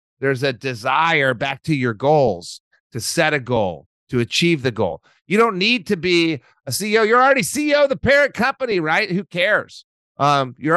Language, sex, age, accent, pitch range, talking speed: English, male, 40-59, American, 130-175 Hz, 190 wpm